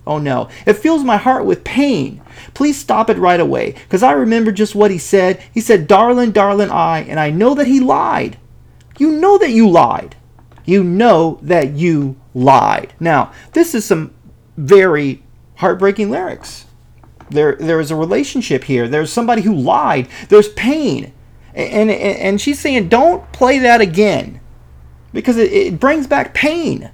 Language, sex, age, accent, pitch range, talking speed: English, male, 30-49, American, 160-250 Hz, 165 wpm